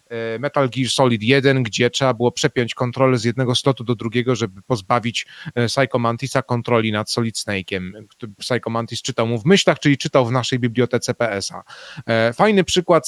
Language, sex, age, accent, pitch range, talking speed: Polish, male, 30-49, native, 120-145 Hz, 165 wpm